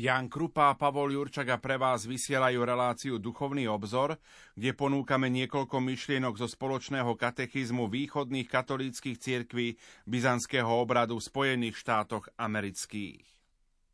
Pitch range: 125-140 Hz